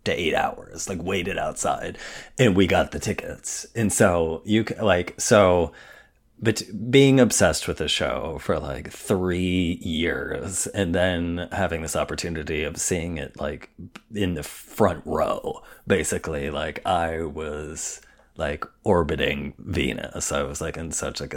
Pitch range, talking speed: 80-100 Hz, 145 wpm